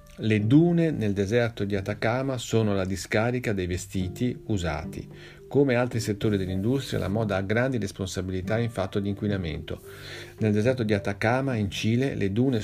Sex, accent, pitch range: male, native, 95-120 Hz